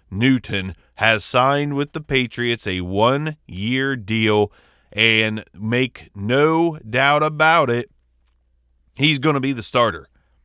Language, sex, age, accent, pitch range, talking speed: English, male, 30-49, American, 90-145 Hz, 125 wpm